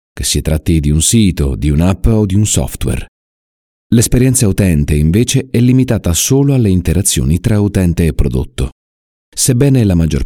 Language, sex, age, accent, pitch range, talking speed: Italian, male, 40-59, native, 75-105 Hz, 160 wpm